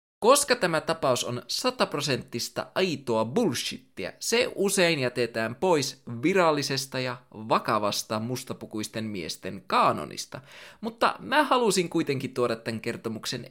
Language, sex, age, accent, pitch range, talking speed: Finnish, male, 20-39, native, 120-185 Hz, 105 wpm